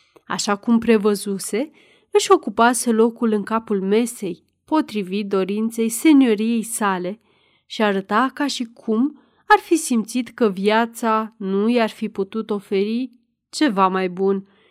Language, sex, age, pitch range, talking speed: Romanian, female, 30-49, 200-265 Hz, 125 wpm